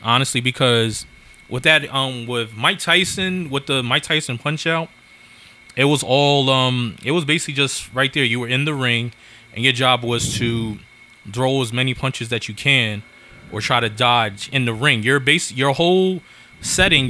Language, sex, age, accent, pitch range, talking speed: English, male, 20-39, American, 115-135 Hz, 185 wpm